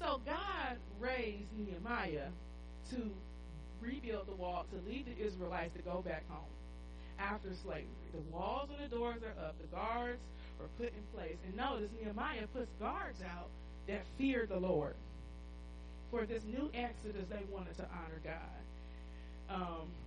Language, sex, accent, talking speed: English, female, American, 155 wpm